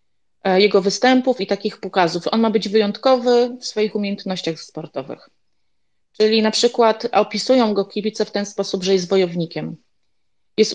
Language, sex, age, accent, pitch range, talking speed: Polish, female, 30-49, native, 195-230 Hz, 145 wpm